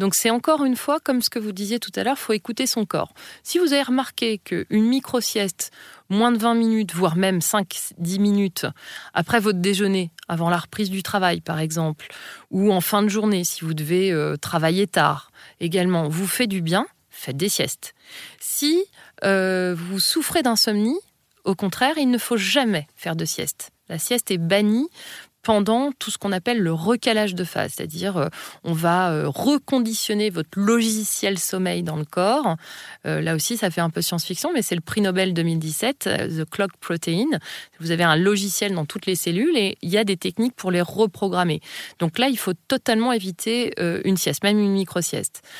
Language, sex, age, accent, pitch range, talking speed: French, female, 30-49, French, 170-220 Hz, 185 wpm